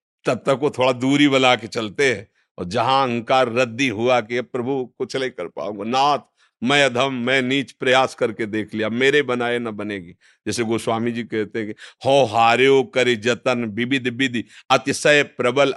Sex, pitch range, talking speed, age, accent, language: male, 115-150 Hz, 160 wpm, 50-69, native, Hindi